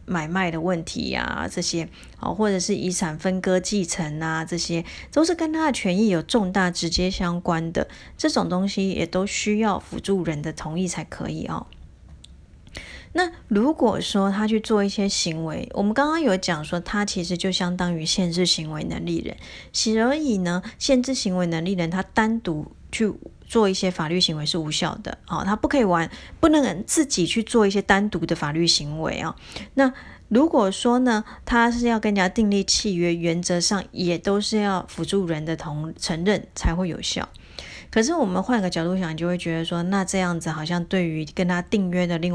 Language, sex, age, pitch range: Chinese, female, 30-49, 170-210 Hz